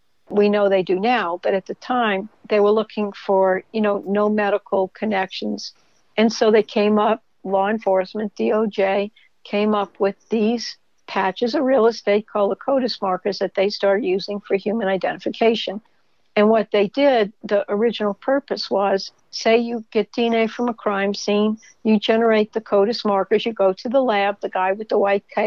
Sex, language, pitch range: female, English, 200-225 Hz